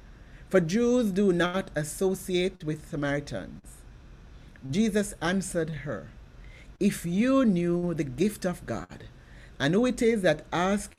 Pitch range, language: 145-195 Hz, English